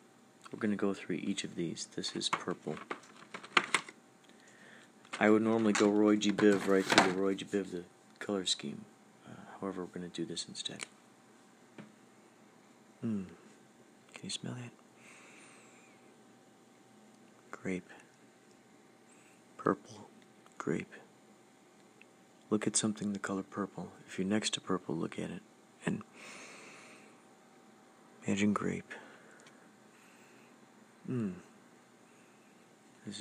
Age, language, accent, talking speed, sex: 40-59, English, American, 105 wpm, male